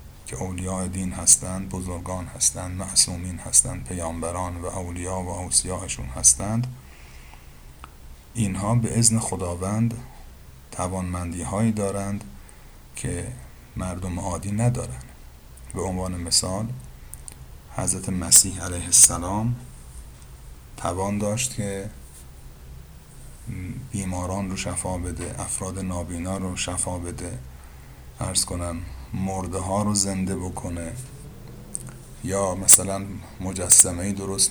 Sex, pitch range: male, 85-100 Hz